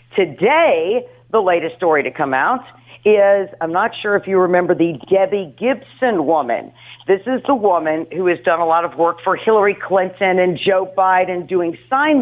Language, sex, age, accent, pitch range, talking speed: English, female, 50-69, American, 160-215 Hz, 180 wpm